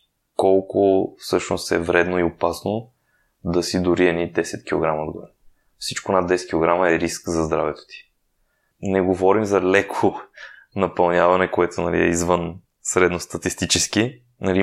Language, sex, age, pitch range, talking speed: Bulgarian, male, 20-39, 90-105 Hz, 135 wpm